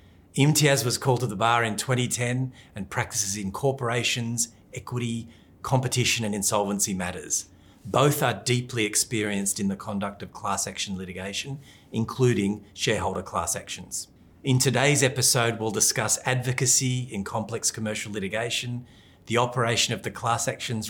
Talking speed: 140 wpm